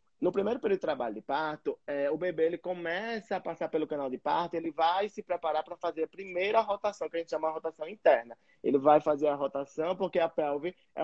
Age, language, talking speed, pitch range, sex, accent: 20-39, Portuguese, 235 wpm, 155-185 Hz, male, Brazilian